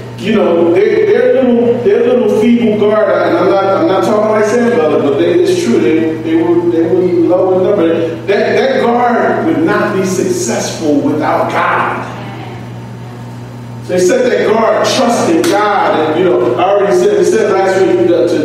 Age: 40-59